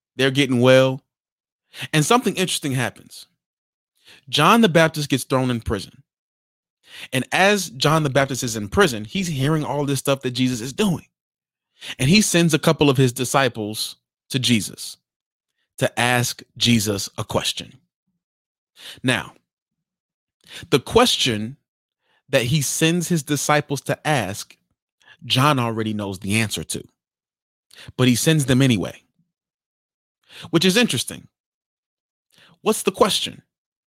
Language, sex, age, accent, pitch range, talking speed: English, male, 30-49, American, 125-170 Hz, 130 wpm